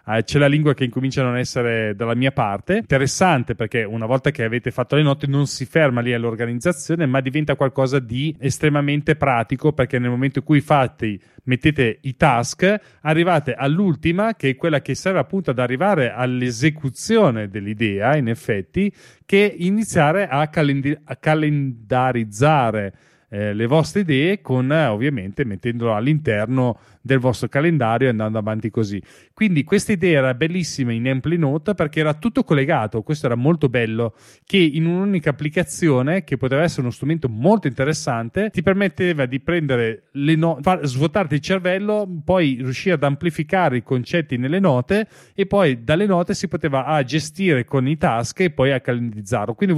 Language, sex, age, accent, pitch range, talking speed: Italian, male, 30-49, native, 125-165 Hz, 160 wpm